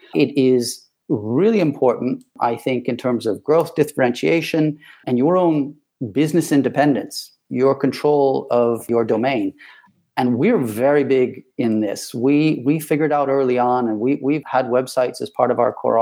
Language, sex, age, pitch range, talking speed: English, male, 40-59, 125-145 Hz, 160 wpm